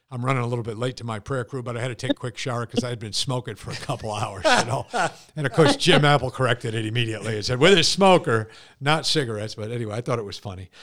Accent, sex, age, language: American, male, 50-69, English